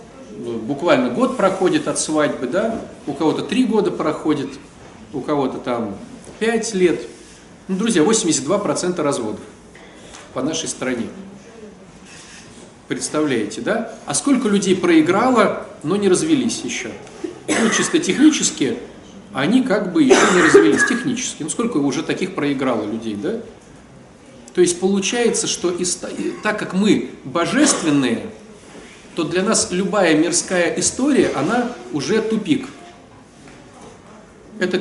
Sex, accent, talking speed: male, native, 120 wpm